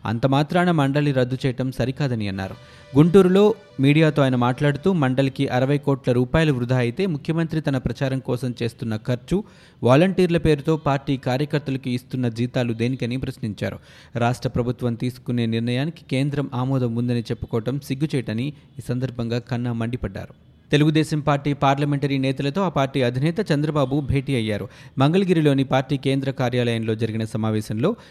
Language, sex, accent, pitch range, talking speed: Telugu, male, native, 125-150 Hz, 125 wpm